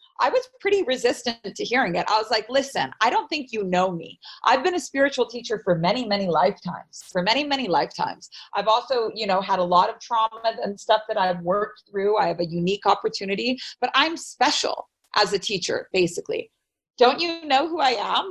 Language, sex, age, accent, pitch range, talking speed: English, female, 40-59, American, 190-255 Hz, 205 wpm